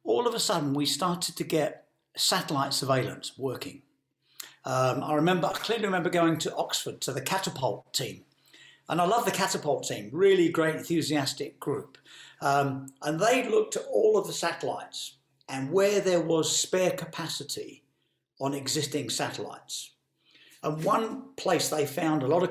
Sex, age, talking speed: male, 50-69, 160 wpm